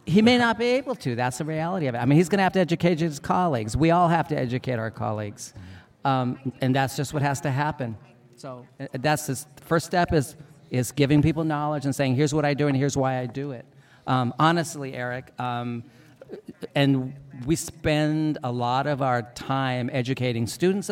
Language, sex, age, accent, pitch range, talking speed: English, male, 40-59, American, 125-160 Hz, 210 wpm